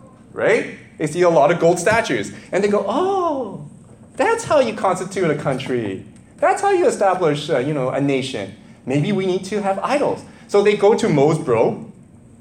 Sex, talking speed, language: male, 190 wpm, English